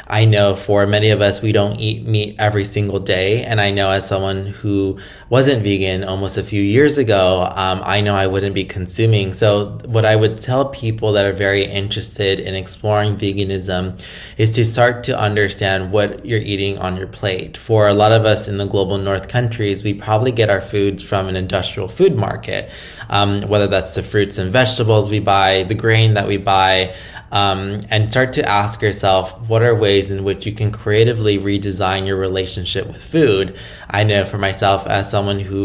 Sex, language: male, English